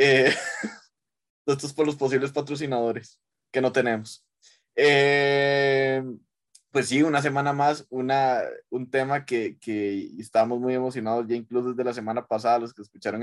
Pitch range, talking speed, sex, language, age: 110-140 Hz, 150 wpm, male, Spanish, 20-39